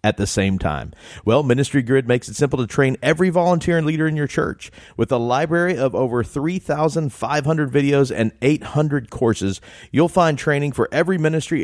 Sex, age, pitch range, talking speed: male, 40-59, 110-155 Hz, 180 wpm